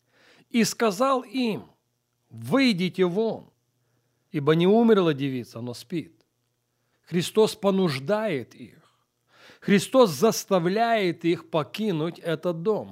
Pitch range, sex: 130-200 Hz, male